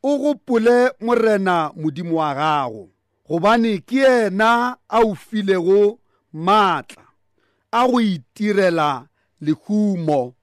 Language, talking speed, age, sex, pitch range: English, 100 wpm, 40-59, male, 175-235 Hz